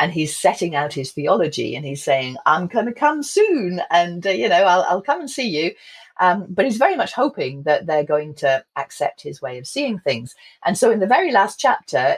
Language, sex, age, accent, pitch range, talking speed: English, female, 40-59, British, 145-210 Hz, 230 wpm